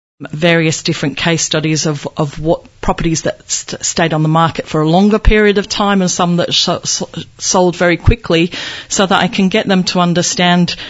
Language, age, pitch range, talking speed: English, 40-59, 155-175 Hz, 180 wpm